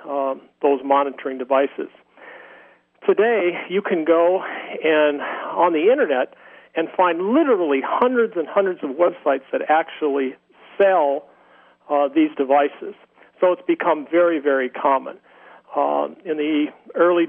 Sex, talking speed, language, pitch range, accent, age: male, 125 wpm, English, 140-165 Hz, American, 50-69